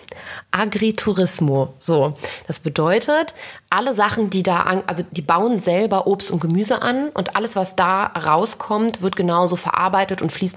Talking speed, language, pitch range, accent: 155 wpm, German, 165-205 Hz, German